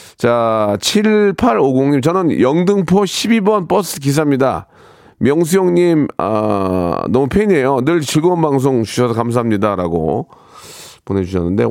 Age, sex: 40-59, male